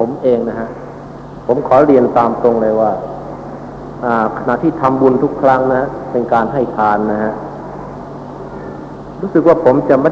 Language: Thai